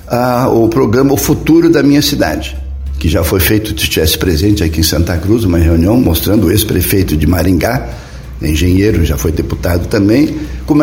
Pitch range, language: 95-120 Hz, Portuguese